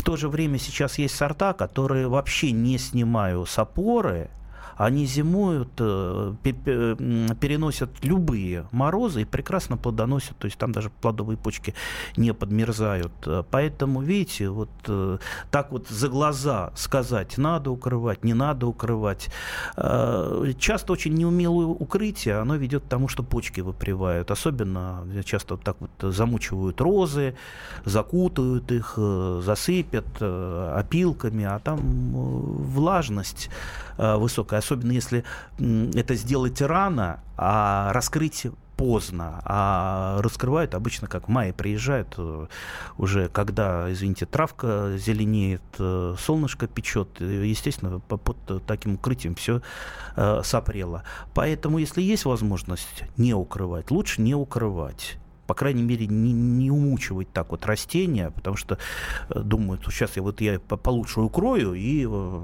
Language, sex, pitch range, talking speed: Russian, male, 95-135 Hz, 120 wpm